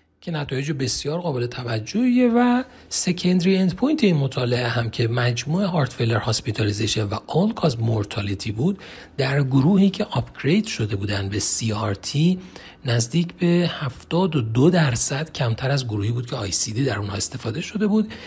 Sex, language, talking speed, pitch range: male, Persian, 140 wpm, 110-160 Hz